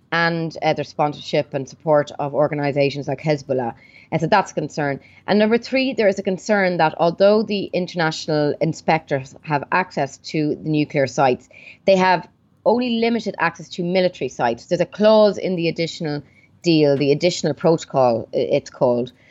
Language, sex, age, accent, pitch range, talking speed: English, female, 30-49, Irish, 145-180 Hz, 165 wpm